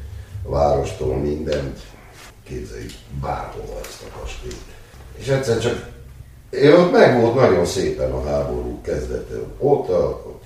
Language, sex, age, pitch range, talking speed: Hungarian, male, 60-79, 95-110 Hz, 120 wpm